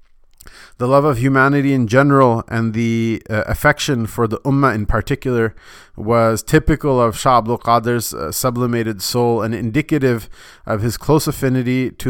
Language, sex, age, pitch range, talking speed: English, male, 30-49, 110-130 Hz, 155 wpm